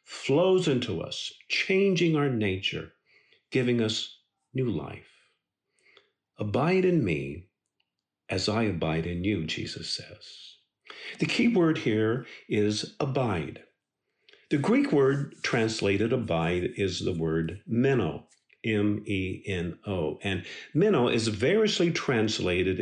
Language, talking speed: English, 110 wpm